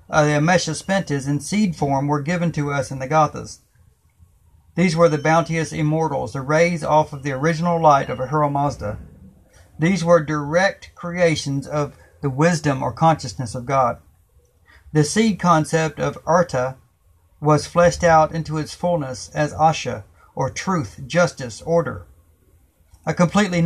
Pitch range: 130-165 Hz